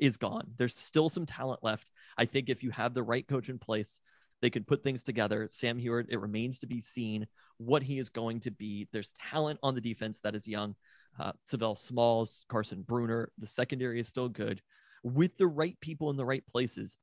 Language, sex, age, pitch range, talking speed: English, male, 30-49, 115-150 Hz, 215 wpm